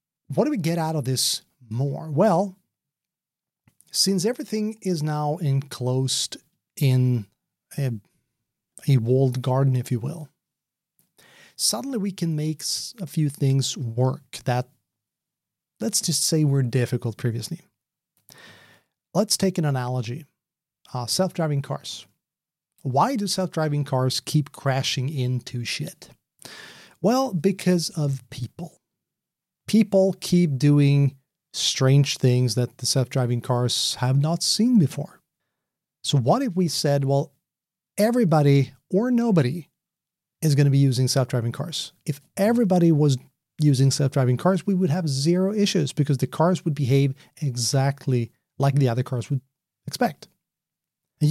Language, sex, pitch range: English, male, 130-175 Hz